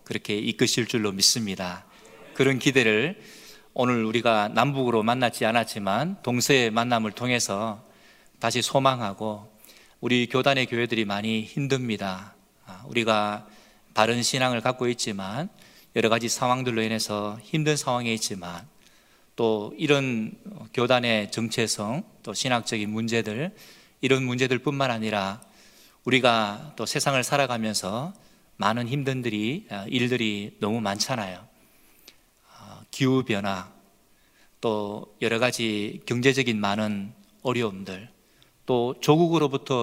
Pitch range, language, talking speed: 105-130 Hz, English, 95 wpm